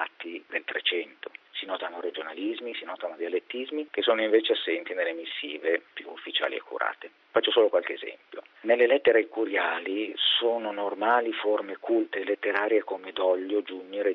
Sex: male